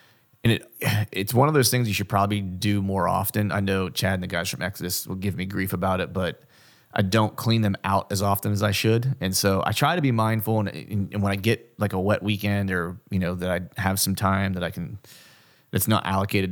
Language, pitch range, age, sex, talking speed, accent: English, 95-105 Hz, 30-49, male, 245 wpm, American